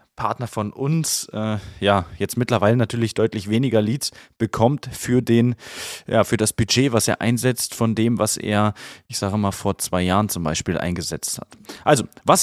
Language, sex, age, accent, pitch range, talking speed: German, male, 20-39, German, 105-130 Hz, 170 wpm